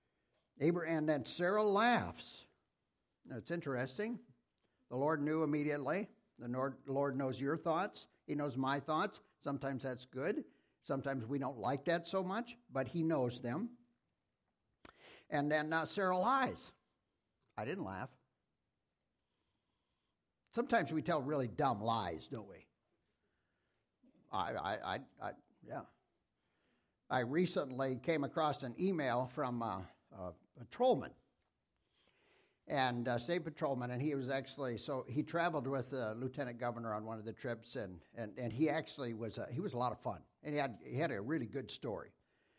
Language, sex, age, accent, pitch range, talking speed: English, male, 60-79, American, 130-165 Hz, 155 wpm